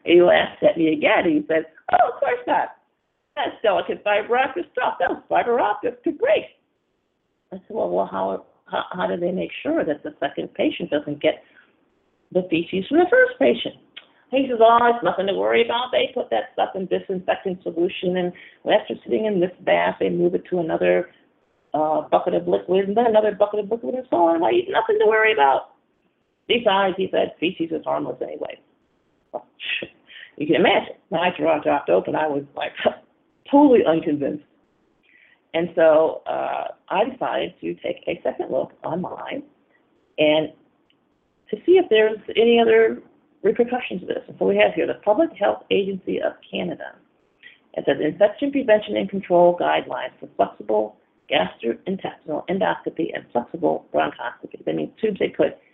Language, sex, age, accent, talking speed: English, female, 40-59, American, 165 wpm